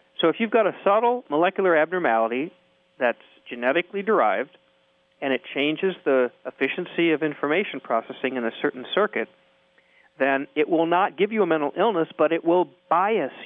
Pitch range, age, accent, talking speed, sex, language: 130-185 Hz, 50-69, American, 160 wpm, male, English